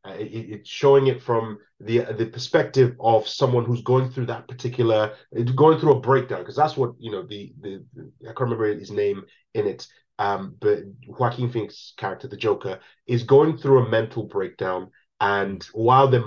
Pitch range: 110-135 Hz